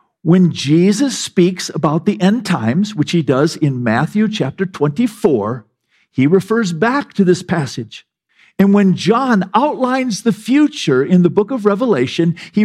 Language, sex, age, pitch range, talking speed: English, male, 50-69, 130-205 Hz, 150 wpm